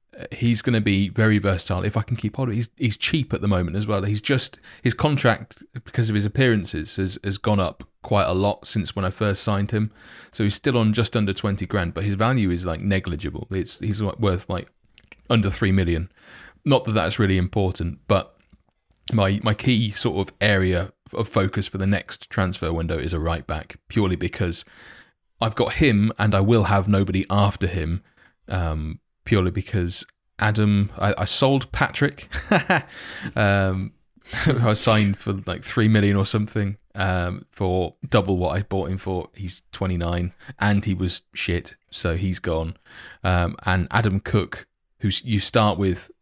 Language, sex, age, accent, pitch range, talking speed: English, male, 20-39, British, 90-105 Hz, 180 wpm